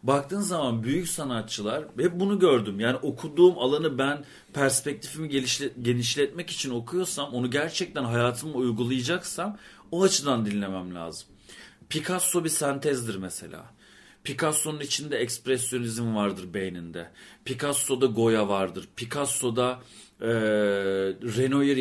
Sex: male